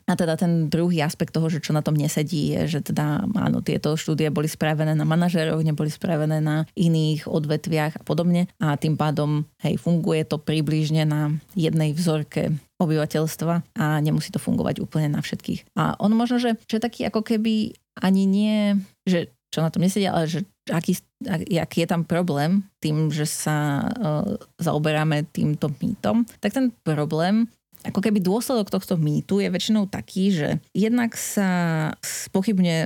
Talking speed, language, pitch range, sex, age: 165 wpm, Slovak, 155-190 Hz, female, 30-49